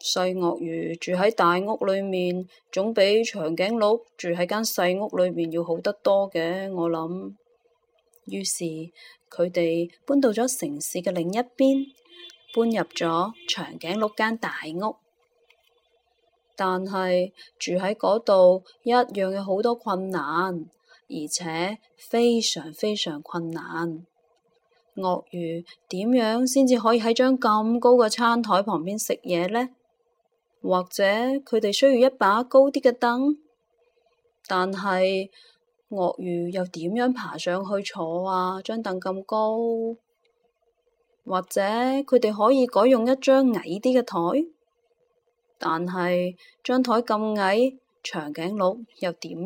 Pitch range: 180-240 Hz